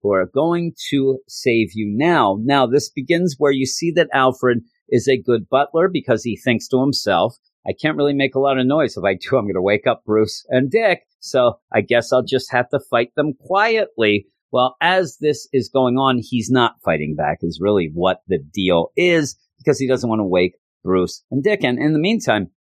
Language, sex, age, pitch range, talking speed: English, male, 50-69, 115-155 Hz, 210 wpm